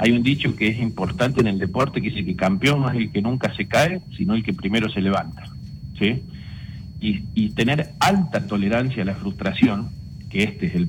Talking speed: 215 wpm